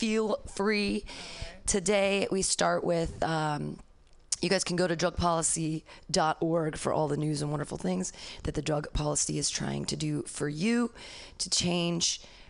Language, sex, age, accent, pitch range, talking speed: English, female, 30-49, American, 150-180 Hz, 155 wpm